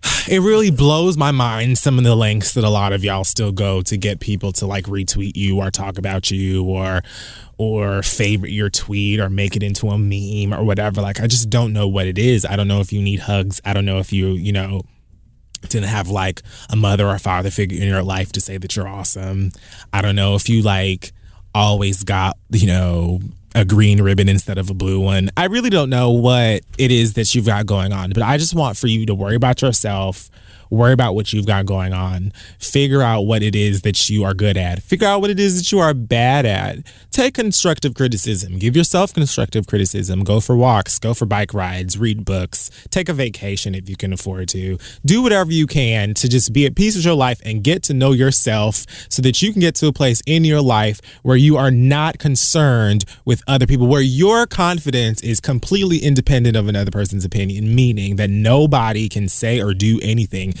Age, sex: 20-39, male